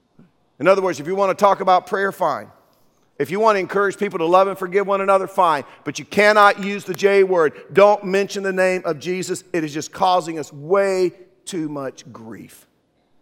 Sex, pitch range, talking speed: male, 140-185 Hz, 210 wpm